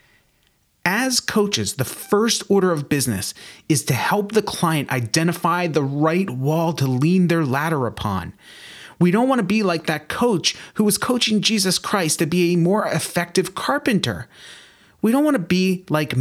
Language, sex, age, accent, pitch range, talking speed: English, male, 30-49, American, 110-170 Hz, 170 wpm